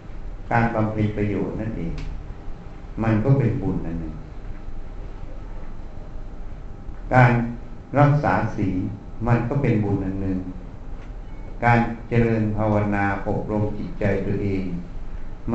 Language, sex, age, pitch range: Thai, male, 60-79, 100-120 Hz